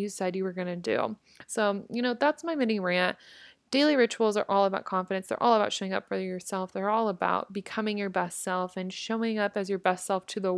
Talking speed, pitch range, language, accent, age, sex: 245 wpm, 200-245 Hz, English, American, 20-39, female